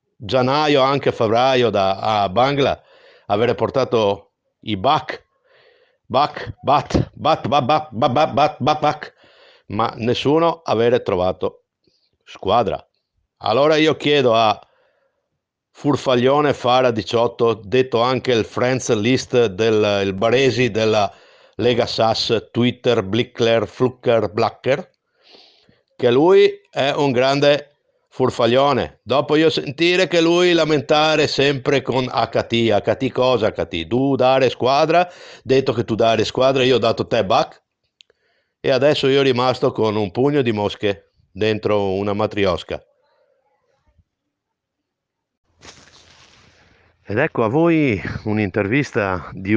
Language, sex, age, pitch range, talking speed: Italian, male, 50-69, 110-150 Hz, 115 wpm